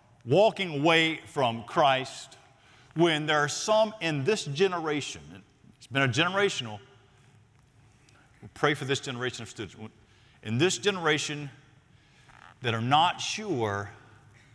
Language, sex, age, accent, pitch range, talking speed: English, male, 50-69, American, 115-140 Hz, 115 wpm